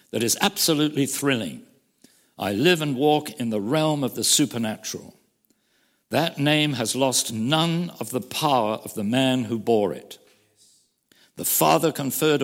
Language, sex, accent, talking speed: English, male, British, 150 wpm